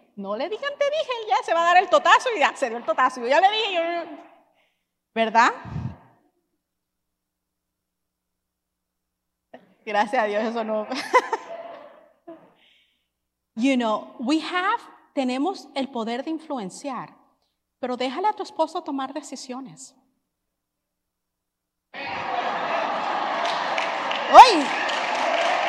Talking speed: 110 wpm